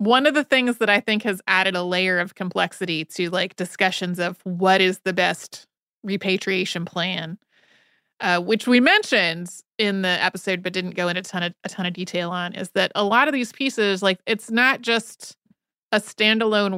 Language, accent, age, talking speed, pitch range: English, American, 30-49, 195 wpm, 185-235 Hz